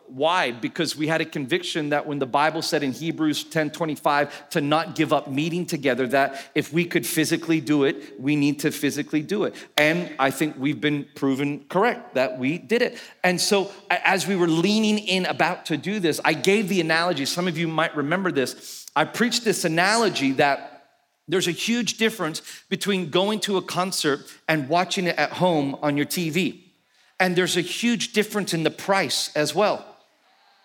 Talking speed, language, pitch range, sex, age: 190 wpm, English, 155-205 Hz, male, 40-59